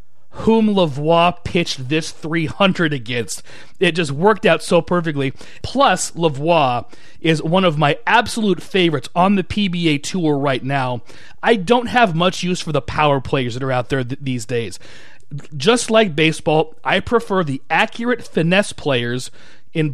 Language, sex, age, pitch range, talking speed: English, male, 30-49, 140-195 Hz, 155 wpm